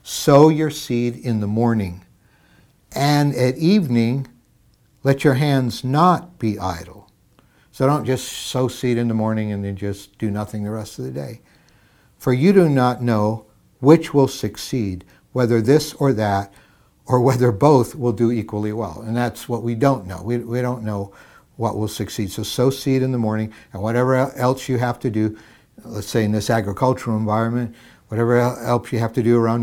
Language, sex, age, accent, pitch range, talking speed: English, male, 60-79, American, 105-130 Hz, 185 wpm